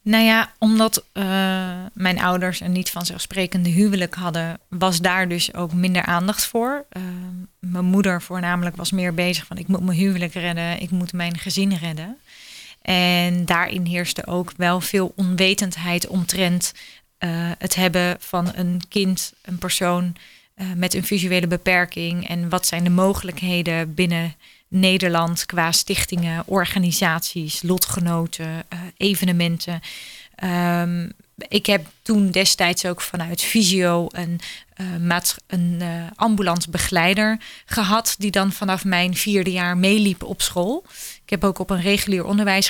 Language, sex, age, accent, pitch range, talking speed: Dutch, female, 30-49, Dutch, 175-190 Hz, 145 wpm